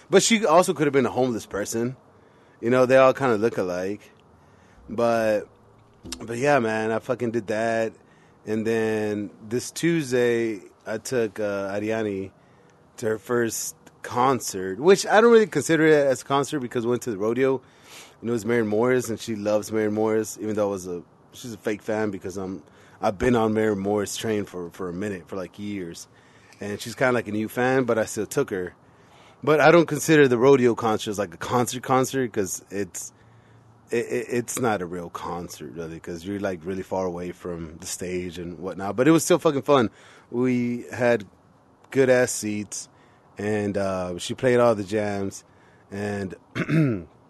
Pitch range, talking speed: 105-130 Hz, 190 wpm